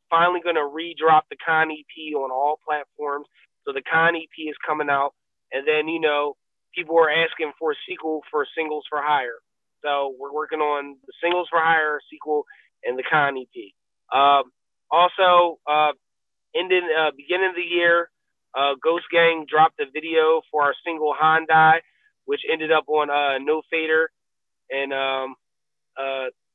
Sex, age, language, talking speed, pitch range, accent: male, 30-49, English, 165 wpm, 145-170 Hz, American